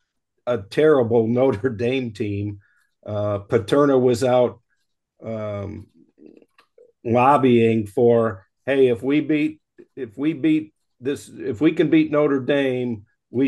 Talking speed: 120 wpm